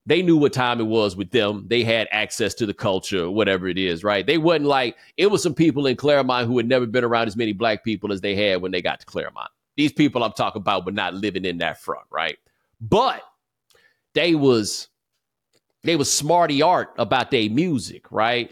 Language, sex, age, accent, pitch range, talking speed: English, male, 30-49, American, 130-185 Hz, 215 wpm